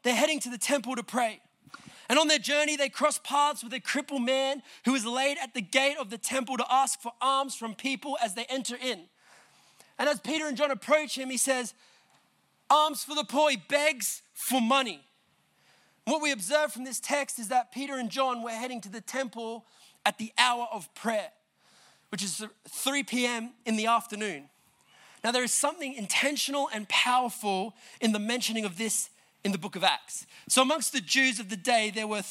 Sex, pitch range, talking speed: male, 230-270 Hz, 200 wpm